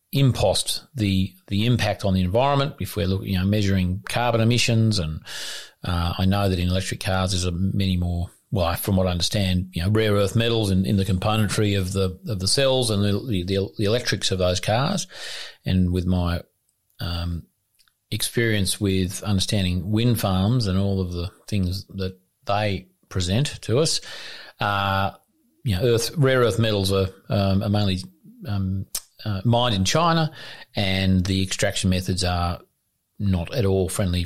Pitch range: 95-115 Hz